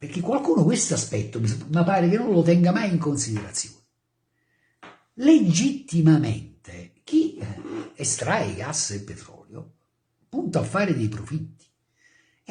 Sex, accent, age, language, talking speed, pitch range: male, native, 50-69, Italian, 120 wpm, 110-155 Hz